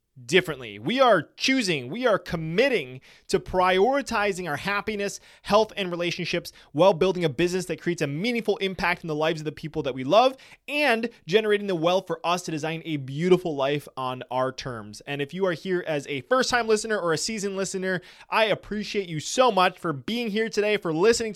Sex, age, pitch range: male, 20-39, 155-195 Hz